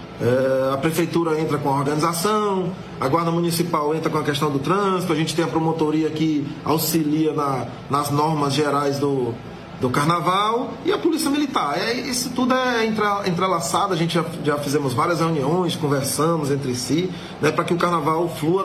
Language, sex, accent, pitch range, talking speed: Portuguese, male, Brazilian, 150-200 Hz, 165 wpm